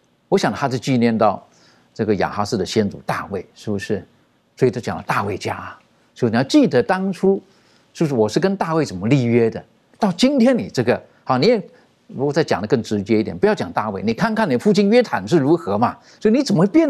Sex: male